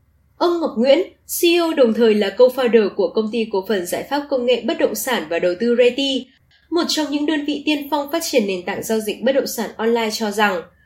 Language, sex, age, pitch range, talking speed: Vietnamese, female, 20-39, 215-275 Hz, 240 wpm